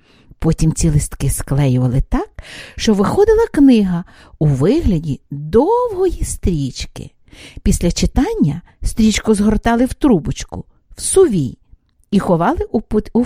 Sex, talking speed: female, 105 wpm